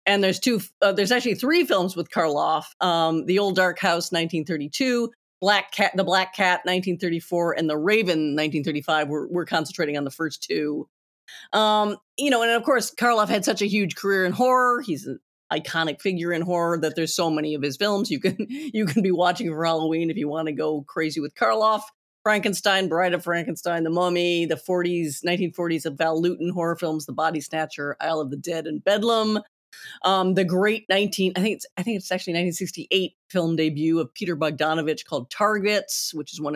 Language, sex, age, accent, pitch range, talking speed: English, female, 40-59, American, 155-195 Hz, 200 wpm